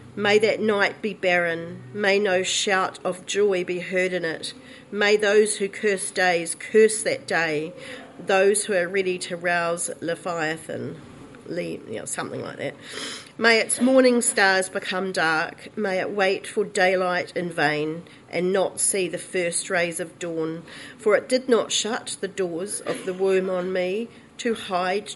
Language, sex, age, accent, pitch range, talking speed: English, female, 40-59, Australian, 180-210 Hz, 165 wpm